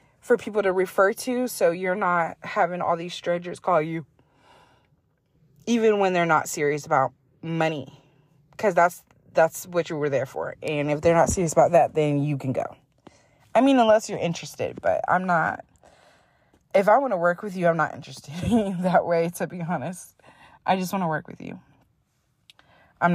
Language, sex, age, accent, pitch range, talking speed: English, female, 20-39, American, 155-200 Hz, 190 wpm